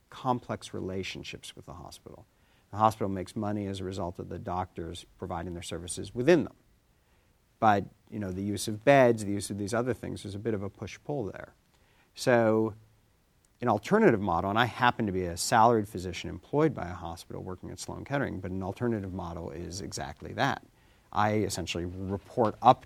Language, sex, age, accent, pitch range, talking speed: English, male, 50-69, American, 90-110 Hz, 185 wpm